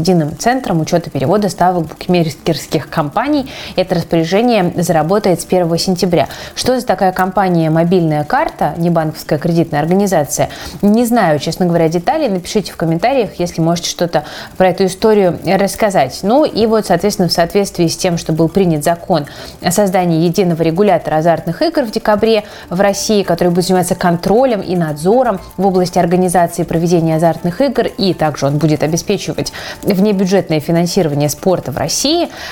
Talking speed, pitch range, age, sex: 155 wpm, 165-200 Hz, 20-39, female